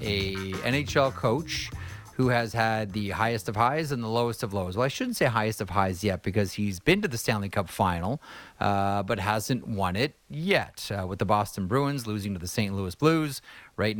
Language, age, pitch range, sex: English, 30-49, 100-120 Hz, male